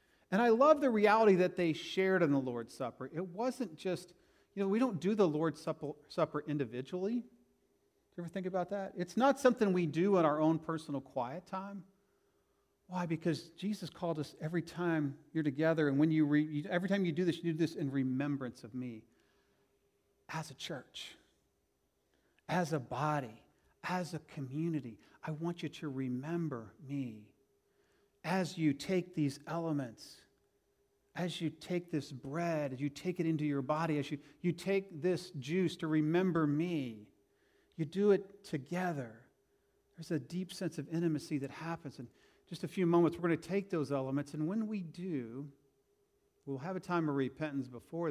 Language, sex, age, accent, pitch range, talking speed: English, male, 40-59, American, 140-180 Hz, 175 wpm